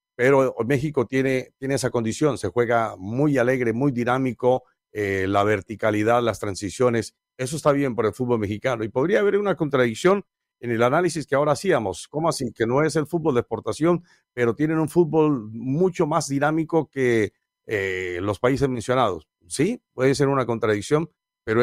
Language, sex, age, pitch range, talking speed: Spanish, male, 50-69, 115-155 Hz, 170 wpm